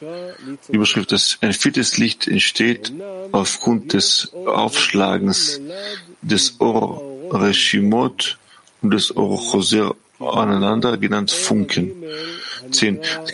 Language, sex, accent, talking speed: English, male, German, 90 wpm